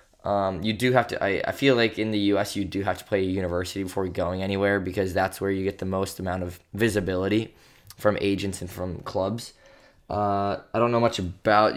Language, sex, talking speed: English, male, 220 wpm